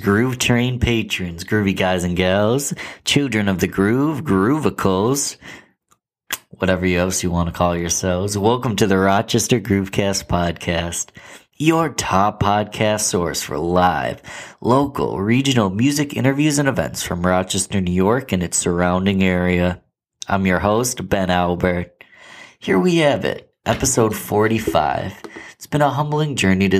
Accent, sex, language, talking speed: American, male, English, 140 wpm